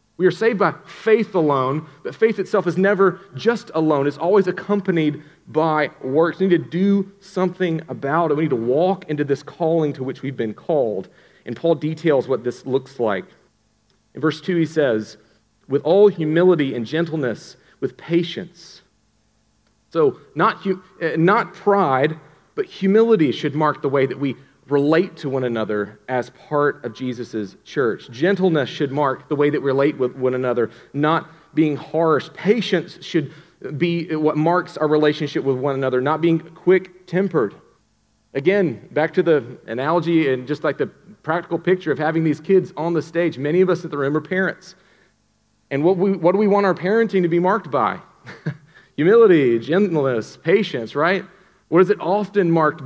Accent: American